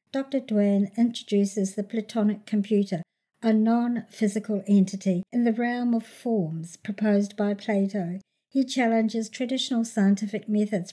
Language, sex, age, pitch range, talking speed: English, male, 60-79, 195-230 Hz, 120 wpm